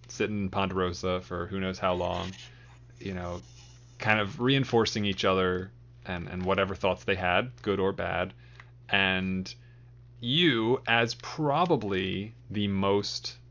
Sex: male